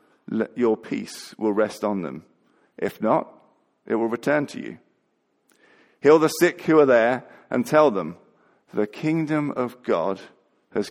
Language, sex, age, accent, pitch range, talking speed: English, male, 50-69, British, 100-135 Hz, 155 wpm